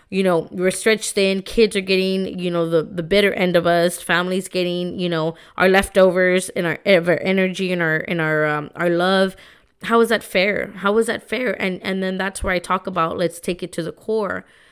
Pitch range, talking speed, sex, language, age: 170-195 Hz, 225 wpm, female, English, 20-39